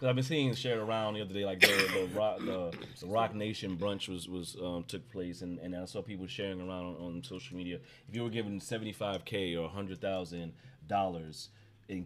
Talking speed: 220 wpm